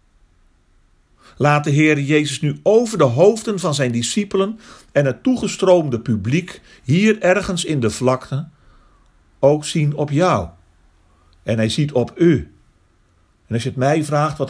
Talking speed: 150 wpm